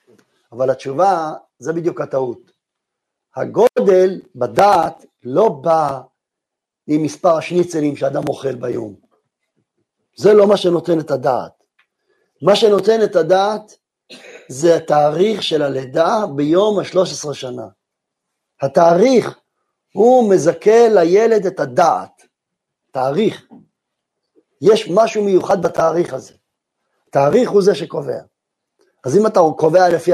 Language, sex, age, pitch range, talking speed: Hebrew, male, 50-69, 155-210 Hz, 105 wpm